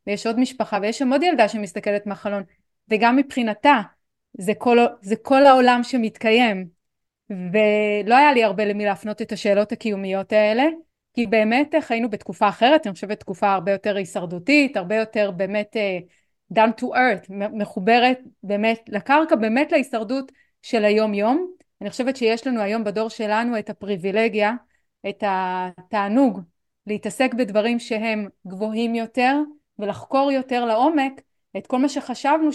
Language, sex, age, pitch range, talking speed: Hebrew, female, 30-49, 210-270 Hz, 140 wpm